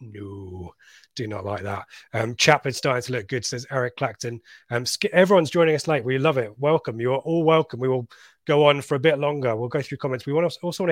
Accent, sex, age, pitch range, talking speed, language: British, male, 30-49, 125-160 Hz, 235 wpm, English